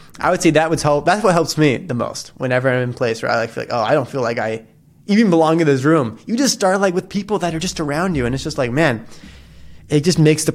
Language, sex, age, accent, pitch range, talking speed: English, male, 20-39, American, 120-155 Hz, 300 wpm